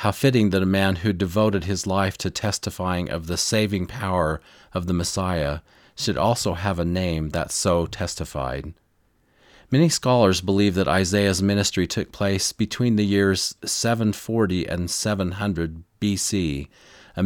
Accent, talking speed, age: American, 145 wpm, 40-59